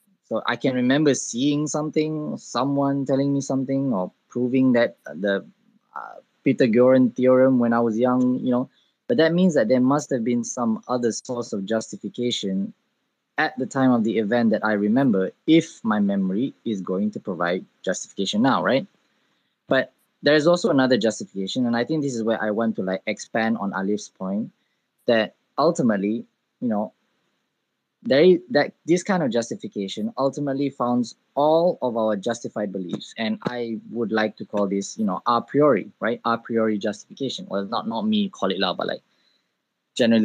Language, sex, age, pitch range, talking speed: English, male, 20-39, 110-145 Hz, 175 wpm